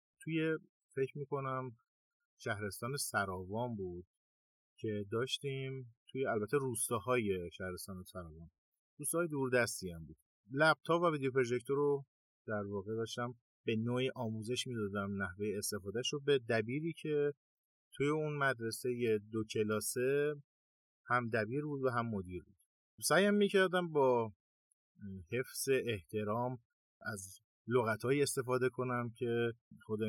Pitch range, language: 100-130 Hz, Persian